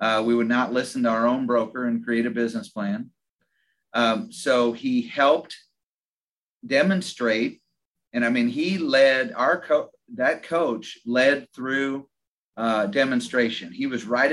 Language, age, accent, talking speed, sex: English, 40-59, American, 145 wpm, male